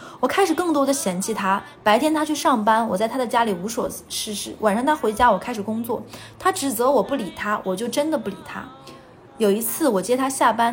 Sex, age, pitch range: female, 20-39, 205-270 Hz